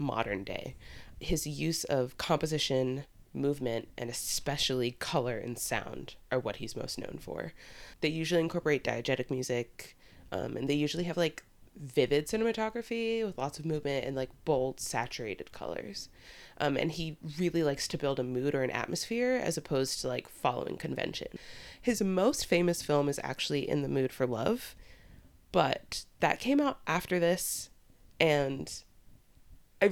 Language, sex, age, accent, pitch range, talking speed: English, female, 20-39, American, 130-165 Hz, 155 wpm